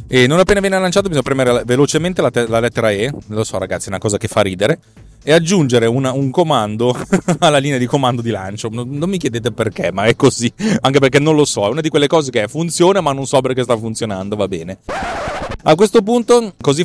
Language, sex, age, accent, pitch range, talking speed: Italian, male, 30-49, native, 105-140 Hz, 230 wpm